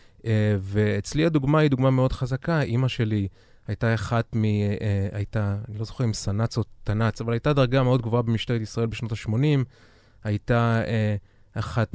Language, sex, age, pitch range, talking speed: Hebrew, male, 20-39, 105-130 Hz, 150 wpm